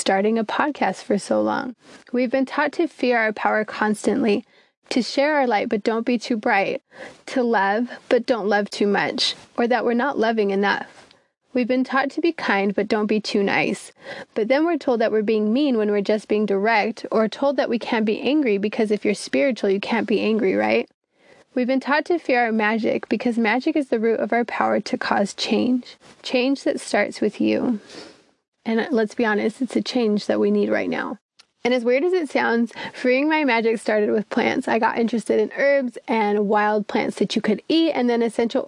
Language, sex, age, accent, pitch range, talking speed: English, female, 20-39, American, 210-255 Hz, 215 wpm